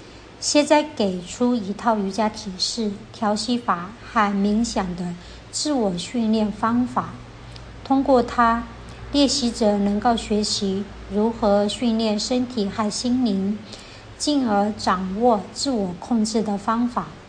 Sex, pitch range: male, 205-240 Hz